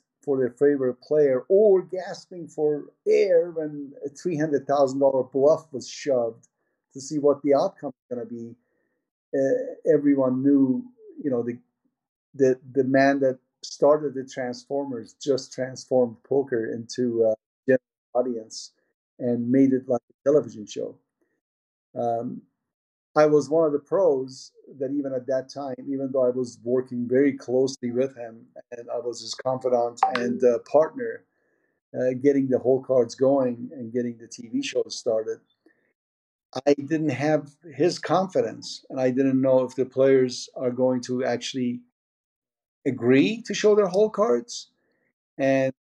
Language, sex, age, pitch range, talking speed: English, male, 50-69, 125-145 Hz, 150 wpm